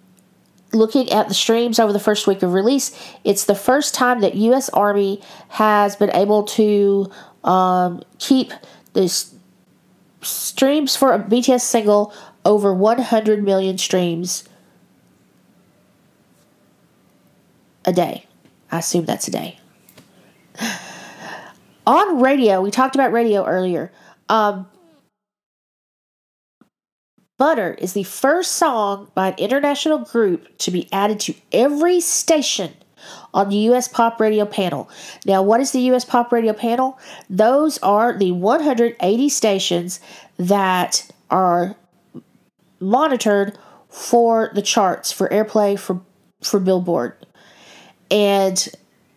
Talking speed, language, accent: 115 wpm, English, American